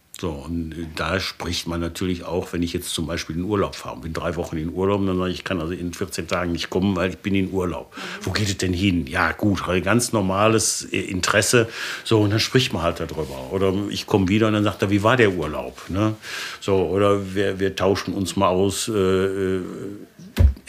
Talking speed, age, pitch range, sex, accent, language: 220 wpm, 60-79, 90-110 Hz, male, German, German